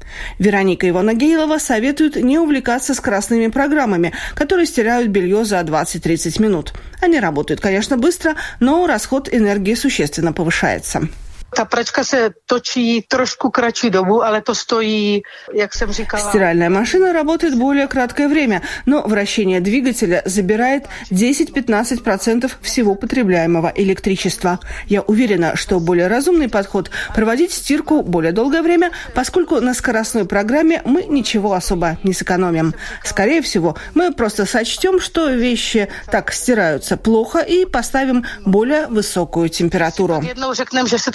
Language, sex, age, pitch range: Russian, female, 40-59, 190-265 Hz